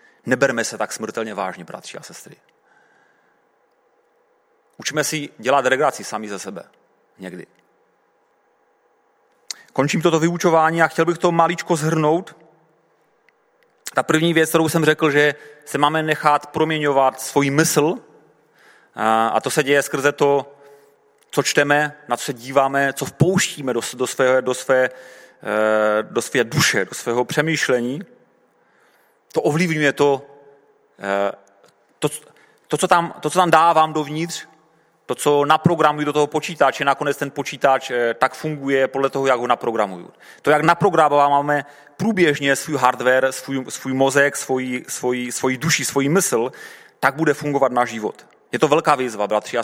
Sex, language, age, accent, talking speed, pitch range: male, Czech, 30-49, native, 140 wpm, 130-160 Hz